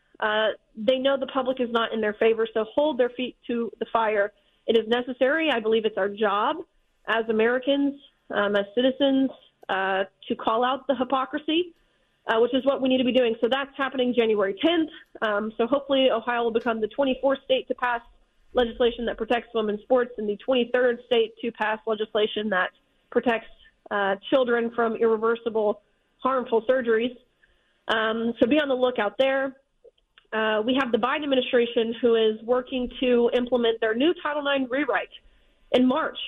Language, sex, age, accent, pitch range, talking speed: English, female, 30-49, American, 220-255 Hz, 175 wpm